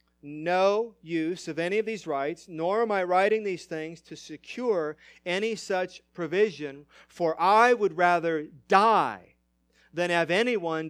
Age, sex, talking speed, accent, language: 40-59, male, 145 wpm, American, English